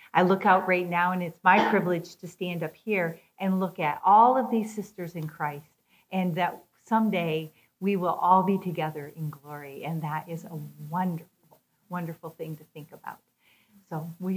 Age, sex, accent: 40-59, female, American